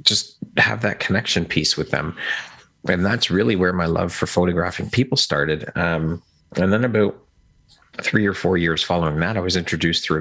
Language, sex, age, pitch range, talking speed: English, male, 30-49, 80-85 Hz, 180 wpm